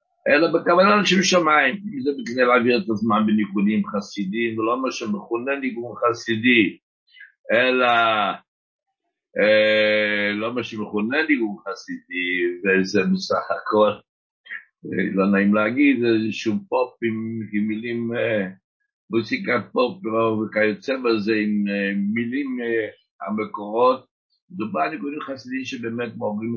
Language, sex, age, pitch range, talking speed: Hebrew, male, 60-79, 105-145 Hz, 120 wpm